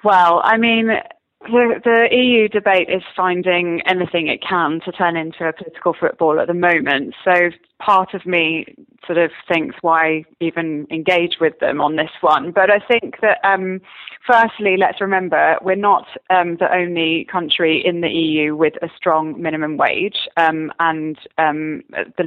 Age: 20-39